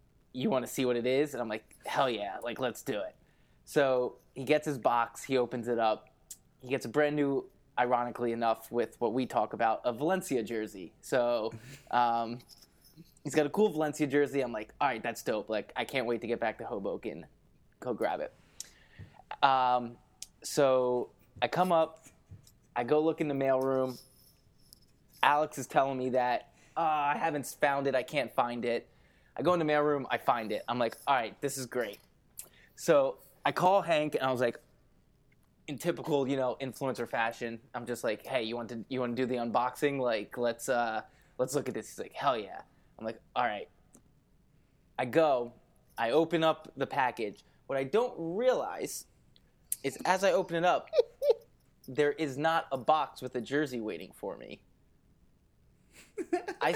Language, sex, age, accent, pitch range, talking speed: English, male, 20-39, American, 120-150 Hz, 185 wpm